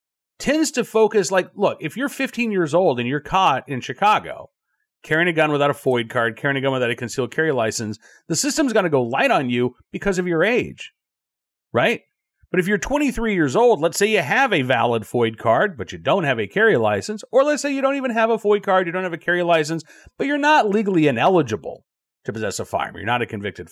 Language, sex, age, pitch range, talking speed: English, male, 40-59, 120-195 Hz, 235 wpm